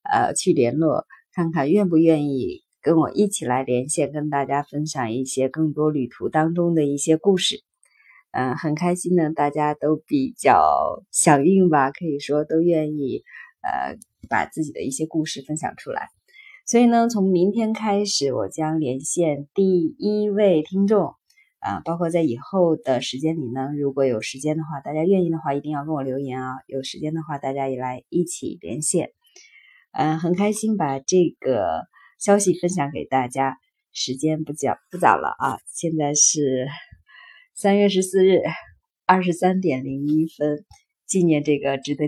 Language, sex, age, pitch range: Chinese, female, 20-39, 145-200 Hz